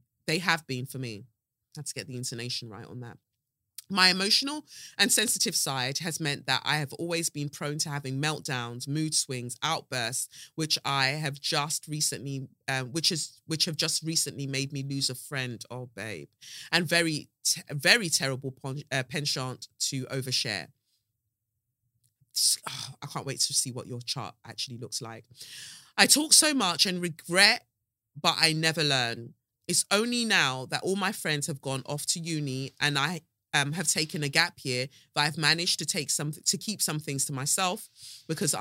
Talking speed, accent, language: 180 wpm, British, English